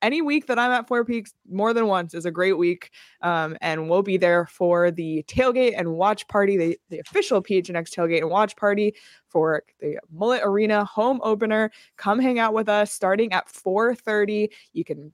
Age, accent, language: 20-39, American, English